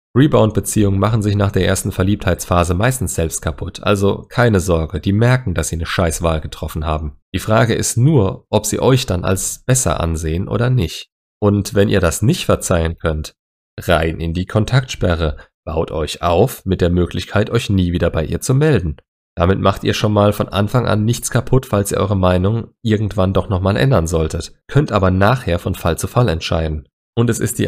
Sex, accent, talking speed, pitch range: male, German, 195 wpm, 85-110 Hz